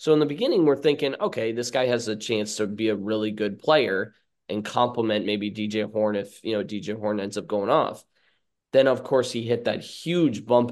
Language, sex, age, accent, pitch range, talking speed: English, male, 20-39, American, 110-145 Hz, 225 wpm